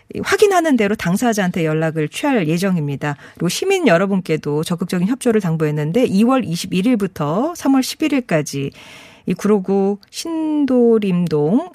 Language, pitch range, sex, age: Korean, 165-235 Hz, female, 40-59